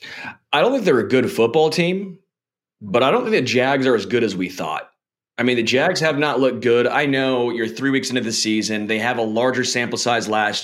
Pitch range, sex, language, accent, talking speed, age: 105-125 Hz, male, English, American, 245 wpm, 30-49